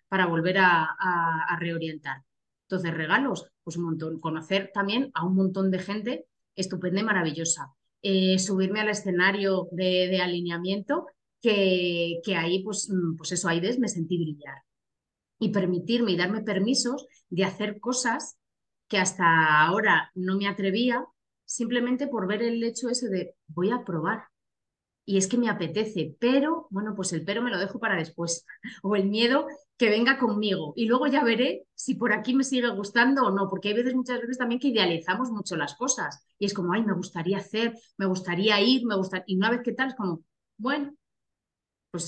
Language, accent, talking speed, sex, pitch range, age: Spanish, Spanish, 180 wpm, female, 170-230 Hz, 30-49